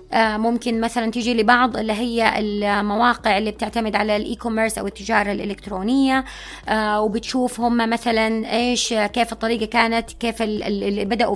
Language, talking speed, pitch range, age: Arabic, 125 wpm, 220-265 Hz, 20-39